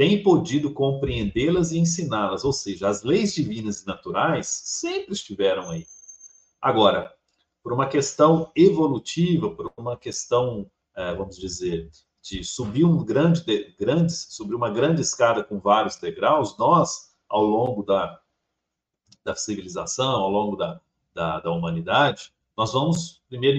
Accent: Brazilian